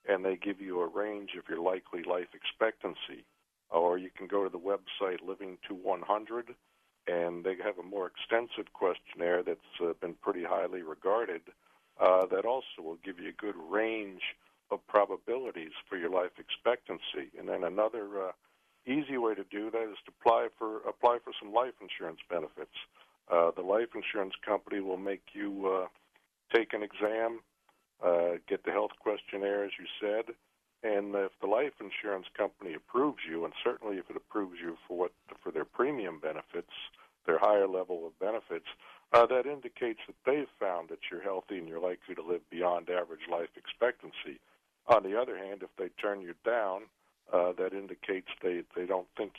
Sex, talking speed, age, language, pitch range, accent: male, 180 wpm, 60-79, English, 90-120 Hz, American